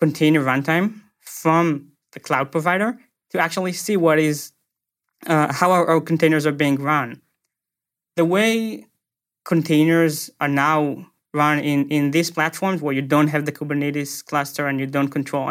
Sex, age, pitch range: male, 20-39, 145-175 Hz